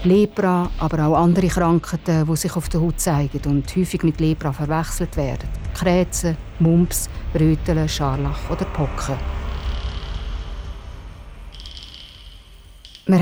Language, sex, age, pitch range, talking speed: German, female, 50-69, 155-185 Hz, 110 wpm